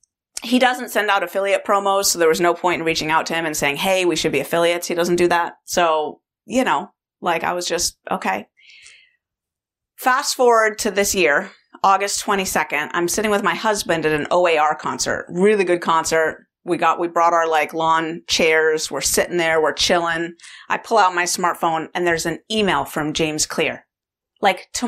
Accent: American